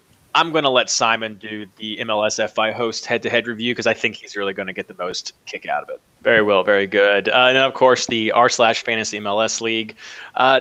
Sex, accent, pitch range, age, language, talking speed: male, American, 110-145 Hz, 20-39, English, 225 wpm